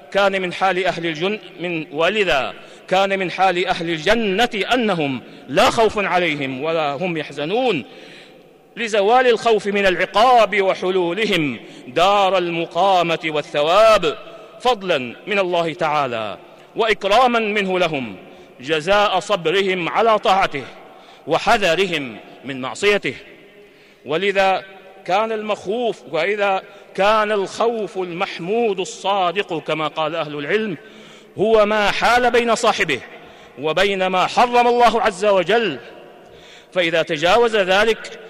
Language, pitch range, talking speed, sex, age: Arabic, 180-215 Hz, 95 wpm, male, 50-69